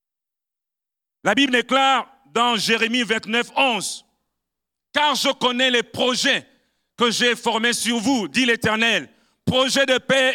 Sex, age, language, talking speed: male, 50-69, French, 130 wpm